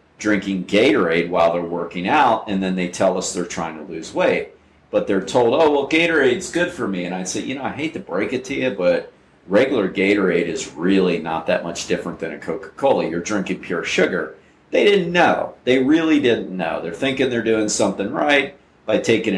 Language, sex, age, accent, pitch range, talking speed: English, male, 40-59, American, 90-130 Hz, 210 wpm